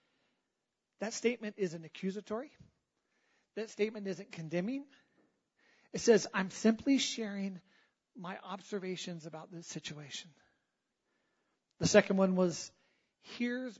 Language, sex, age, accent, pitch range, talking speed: English, male, 40-59, American, 175-220 Hz, 100 wpm